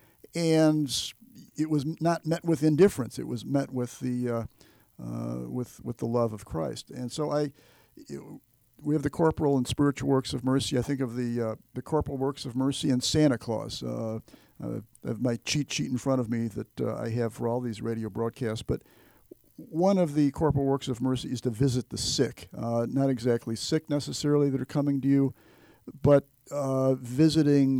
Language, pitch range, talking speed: English, 115-145 Hz, 195 wpm